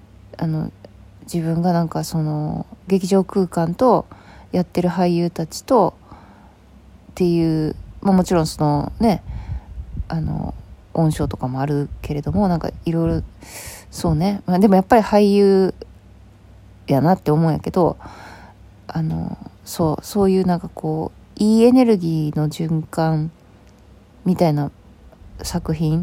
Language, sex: Japanese, female